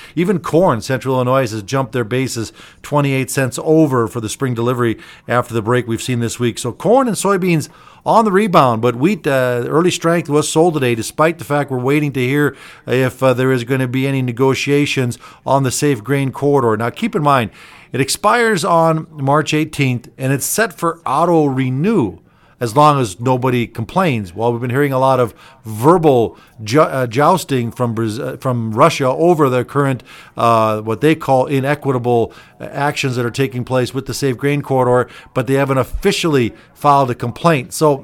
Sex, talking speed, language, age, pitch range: male, 190 wpm, English, 50-69, 125-155 Hz